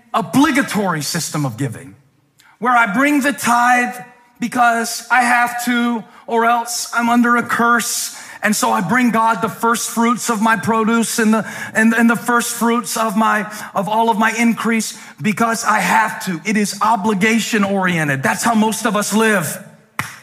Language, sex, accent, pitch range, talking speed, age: English, male, American, 210-255 Hz, 170 wpm, 40-59